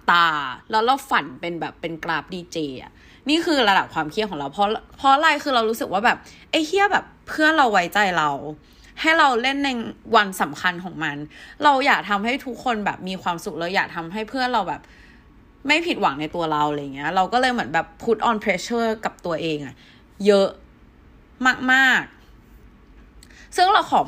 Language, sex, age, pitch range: Thai, female, 20-39, 170-255 Hz